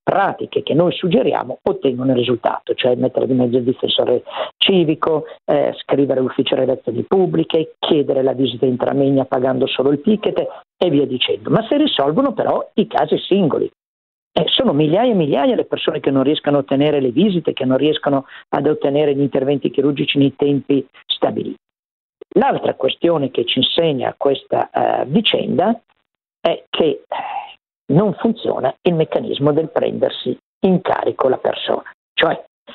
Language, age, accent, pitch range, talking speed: Italian, 50-69, native, 140-230 Hz, 160 wpm